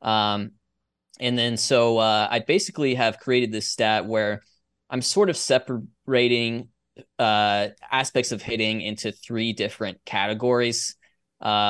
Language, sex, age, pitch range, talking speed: English, male, 20-39, 105-130 Hz, 130 wpm